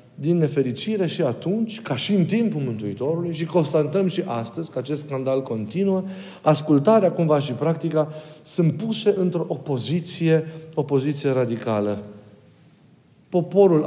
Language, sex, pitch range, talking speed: Romanian, male, 125-165 Hz, 120 wpm